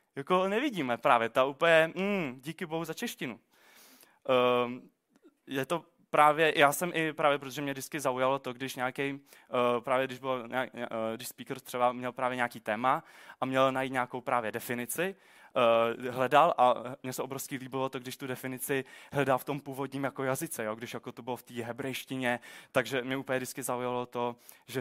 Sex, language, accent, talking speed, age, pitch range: male, Czech, native, 165 wpm, 20-39, 125-145 Hz